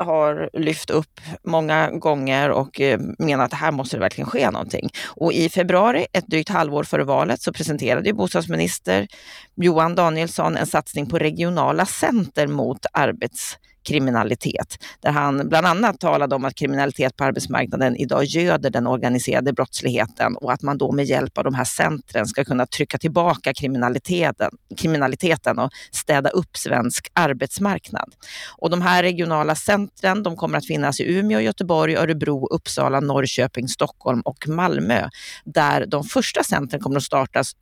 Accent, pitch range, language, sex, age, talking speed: native, 140-170 Hz, Swedish, female, 30-49, 155 wpm